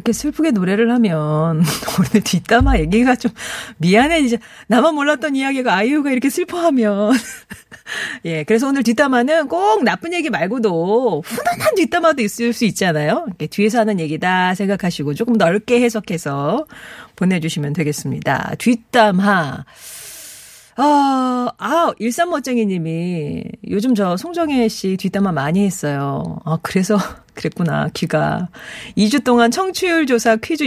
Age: 40-59